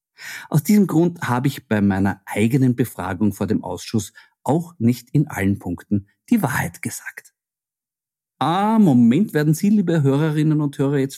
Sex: male